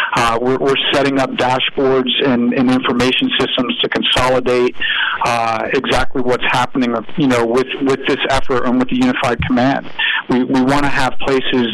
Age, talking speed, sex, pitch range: 50-69, 170 wpm, male, 120-140 Hz